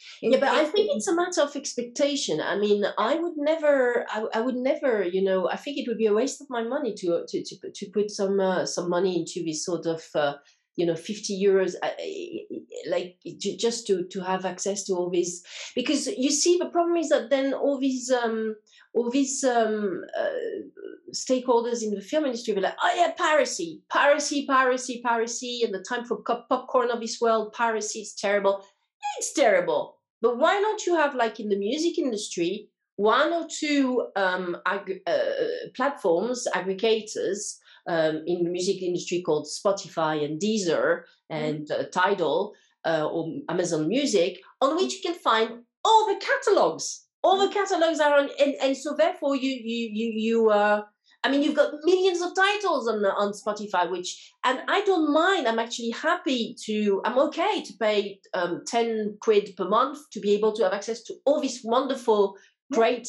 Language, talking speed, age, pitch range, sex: English, 185 wpm, 40-59, 200-295 Hz, female